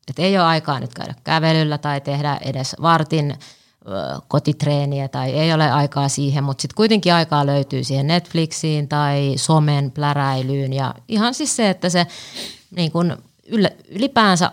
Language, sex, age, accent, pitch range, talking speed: Finnish, female, 30-49, native, 135-165 Hz, 150 wpm